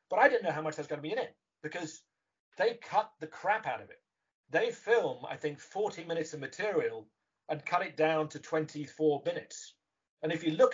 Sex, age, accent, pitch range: male, 40-59, British, 150-225 Hz